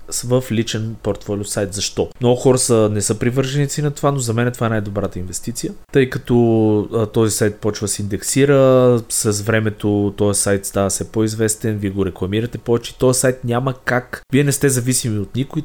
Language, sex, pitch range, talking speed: Bulgarian, male, 105-130 Hz, 195 wpm